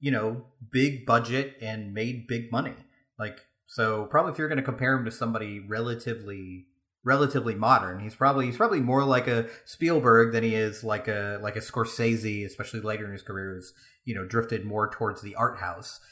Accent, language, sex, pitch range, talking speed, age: American, English, male, 110-135 Hz, 195 wpm, 30-49